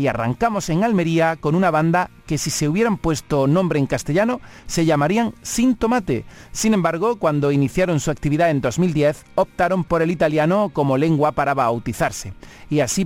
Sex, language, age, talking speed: male, Spanish, 40-59, 170 wpm